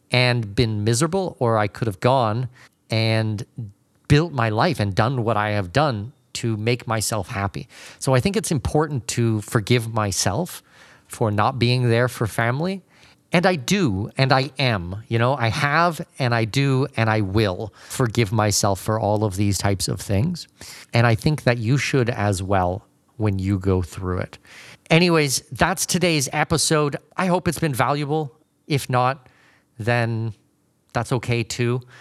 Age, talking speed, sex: 40-59, 165 wpm, male